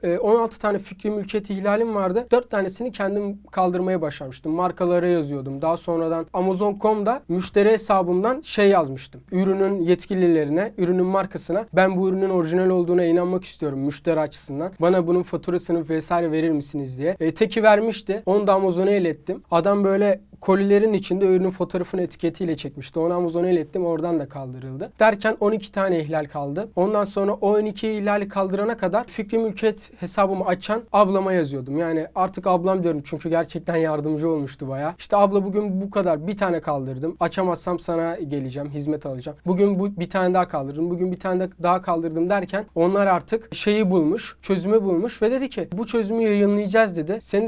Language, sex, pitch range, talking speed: Turkish, male, 170-205 Hz, 160 wpm